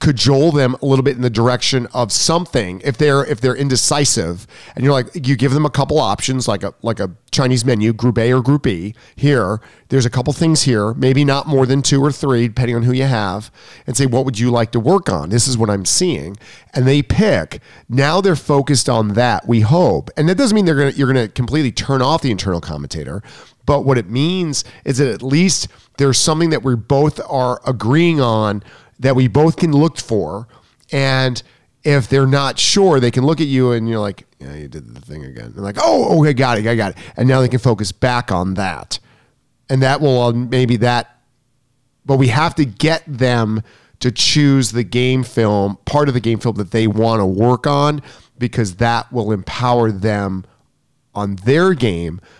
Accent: American